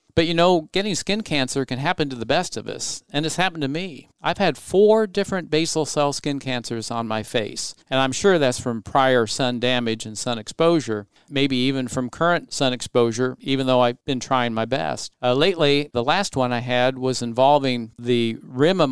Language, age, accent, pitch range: English, 50-69, American, 120-155 Hz